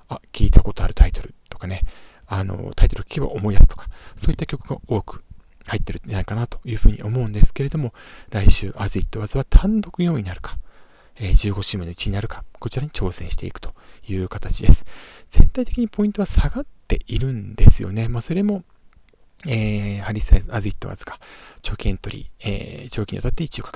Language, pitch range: Japanese, 100-145 Hz